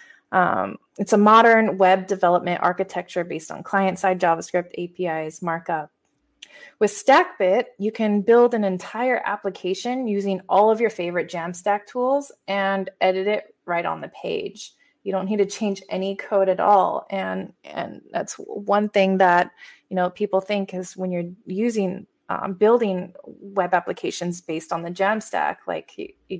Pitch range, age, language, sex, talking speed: 180-225 Hz, 20-39, English, female, 155 wpm